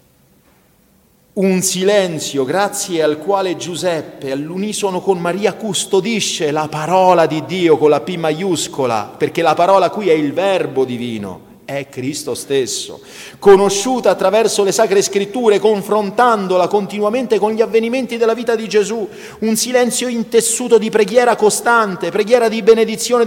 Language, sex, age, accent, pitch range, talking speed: Italian, male, 40-59, native, 155-220 Hz, 135 wpm